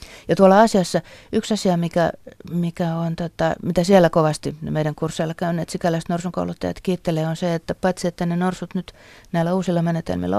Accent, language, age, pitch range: native, Finnish, 30-49, 150-175 Hz